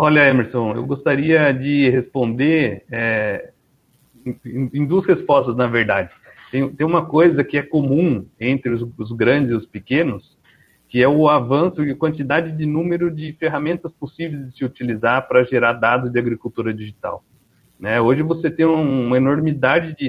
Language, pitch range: Portuguese, 120-155 Hz